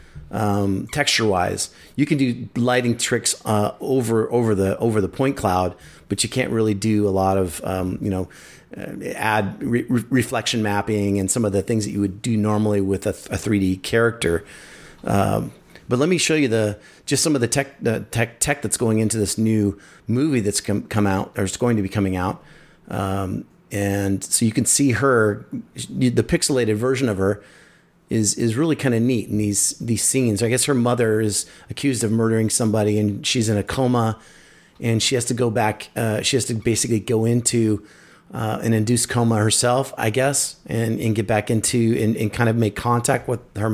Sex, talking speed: male, 205 wpm